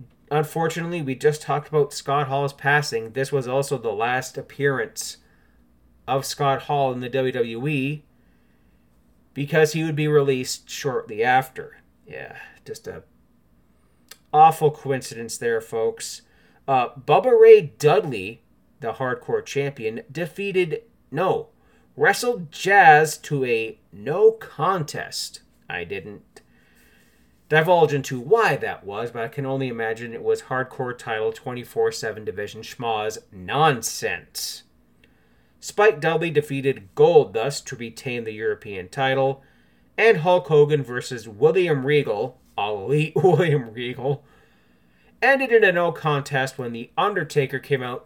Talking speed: 125 wpm